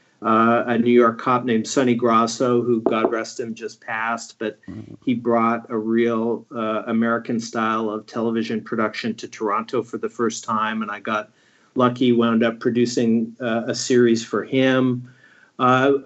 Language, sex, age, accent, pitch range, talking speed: English, male, 40-59, American, 110-125 Hz, 165 wpm